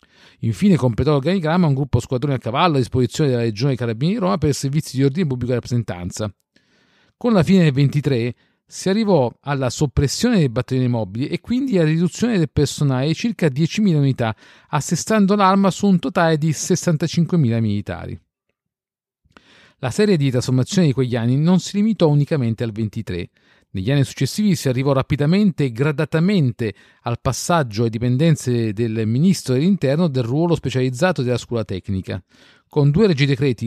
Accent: native